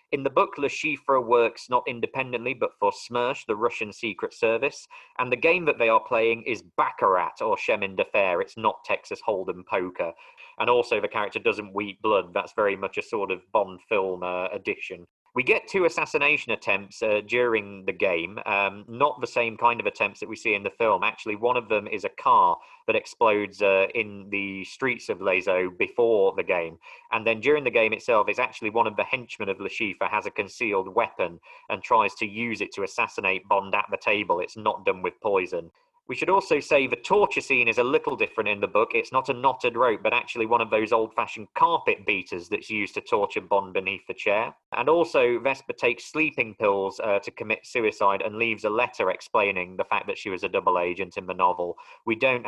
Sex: male